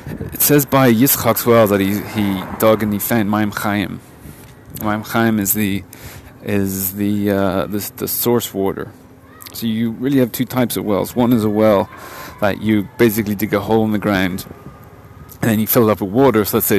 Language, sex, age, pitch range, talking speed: English, male, 30-49, 100-120 Hz, 205 wpm